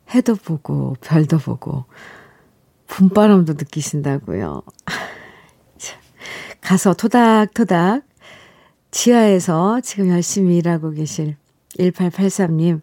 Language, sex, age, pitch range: Korean, female, 50-69, 180-245 Hz